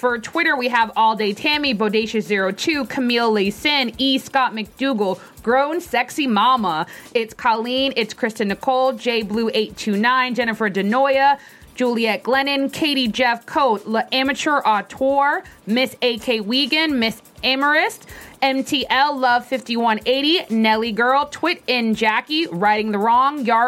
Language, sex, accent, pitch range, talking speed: English, female, American, 230-275 Hz, 125 wpm